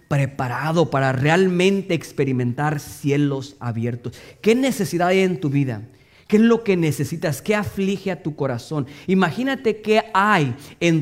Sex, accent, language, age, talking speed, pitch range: male, Mexican, English, 40-59, 140 wpm, 120-175 Hz